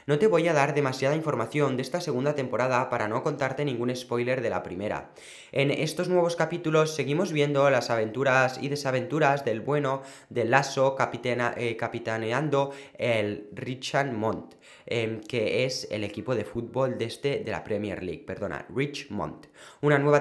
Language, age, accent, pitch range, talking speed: Spanish, 20-39, Spanish, 125-145 Hz, 165 wpm